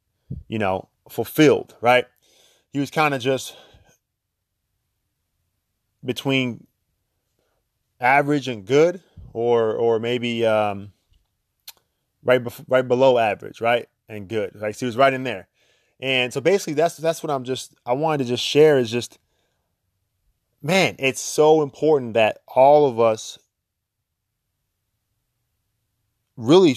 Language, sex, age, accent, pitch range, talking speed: English, male, 20-39, American, 110-140 Hz, 130 wpm